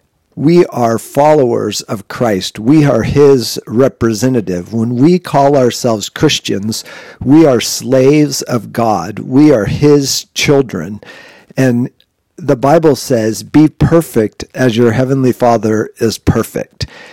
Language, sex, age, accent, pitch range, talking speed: English, male, 50-69, American, 115-150 Hz, 125 wpm